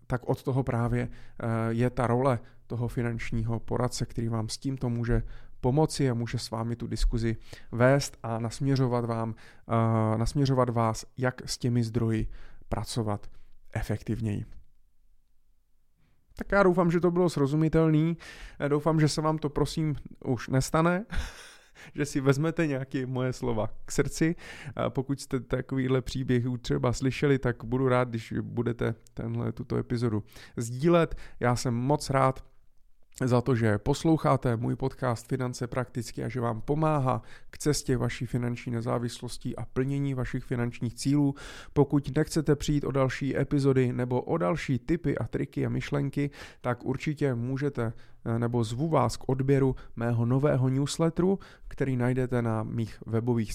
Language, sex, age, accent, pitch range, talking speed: Czech, male, 30-49, native, 115-140 Hz, 140 wpm